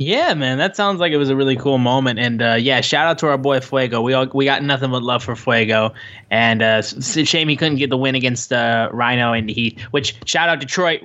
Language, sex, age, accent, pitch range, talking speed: English, male, 20-39, American, 130-155 Hz, 260 wpm